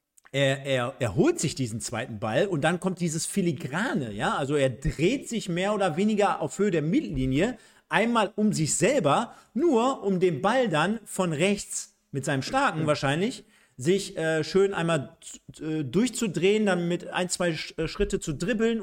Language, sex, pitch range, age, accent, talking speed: German, male, 155-210 Hz, 50-69, German, 170 wpm